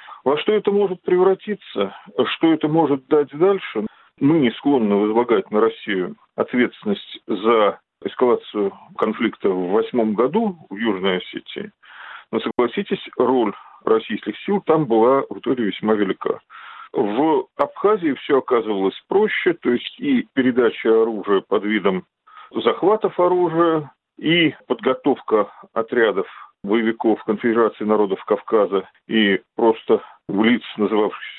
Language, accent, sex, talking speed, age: Russian, native, male, 120 wpm, 40-59